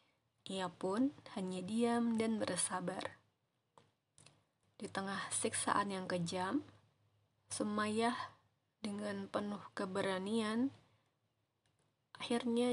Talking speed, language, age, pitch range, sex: 75 wpm, Indonesian, 20-39, 135-220 Hz, female